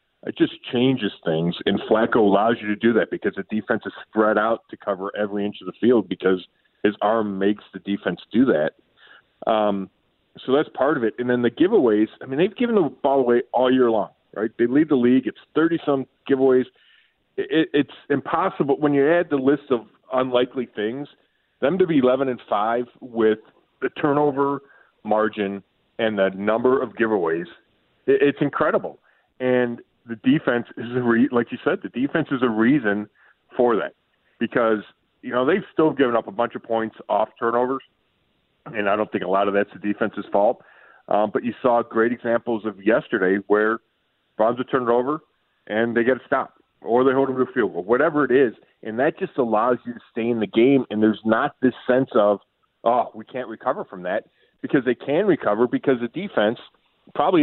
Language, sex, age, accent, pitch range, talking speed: English, male, 40-59, American, 110-135 Hz, 200 wpm